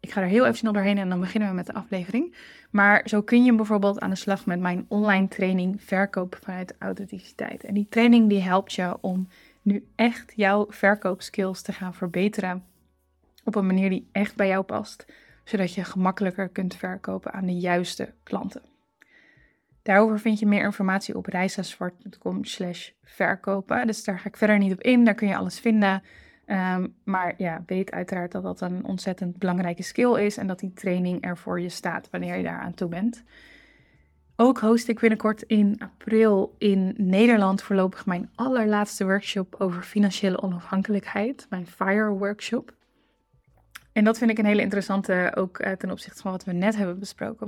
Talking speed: 175 wpm